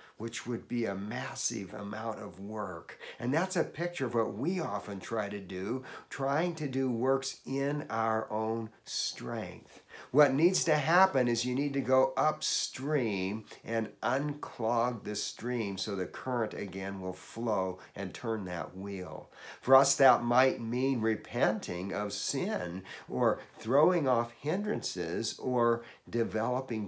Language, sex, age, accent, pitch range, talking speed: English, male, 50-69, American, 100-125 Hz, 145 wpm